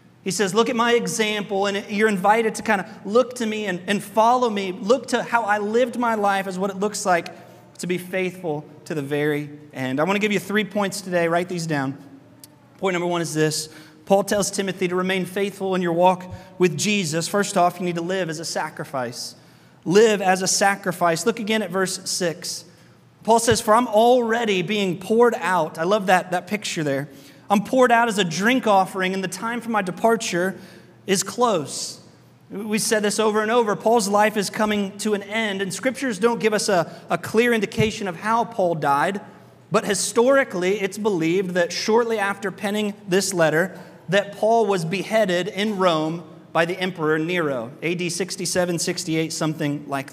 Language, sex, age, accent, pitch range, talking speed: English, male, 30-49, American, 175-220 Hz, 195 wpm